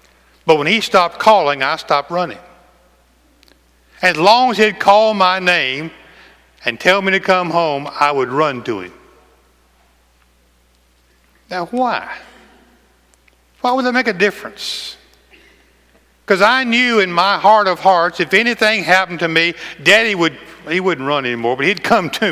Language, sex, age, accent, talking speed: English, male, 60-79, American, 155 wpm